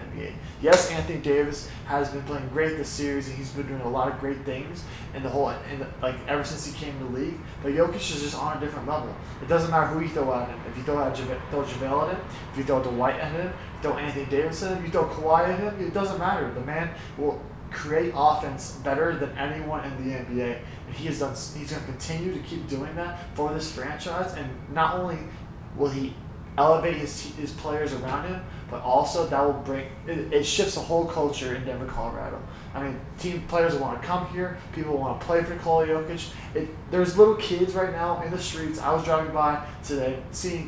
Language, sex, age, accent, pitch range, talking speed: English, male, 20-39, American, 135-165 Hz, 235 wpm